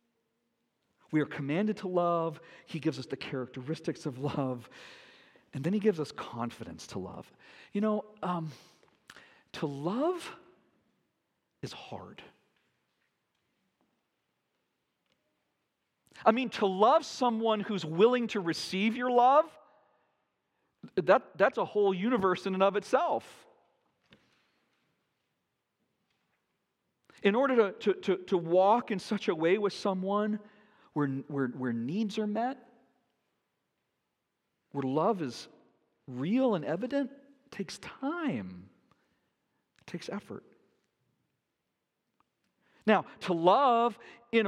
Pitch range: 160-230 Hz